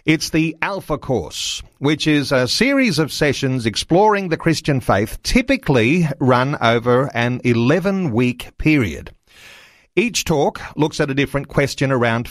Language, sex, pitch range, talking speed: English, male, 125-165 Hz, 135 wpm